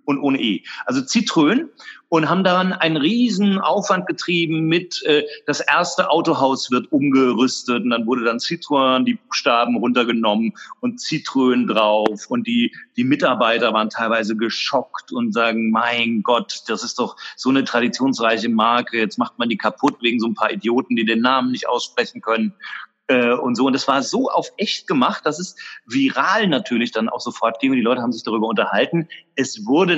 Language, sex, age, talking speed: German, male, 40-59, 180 wpm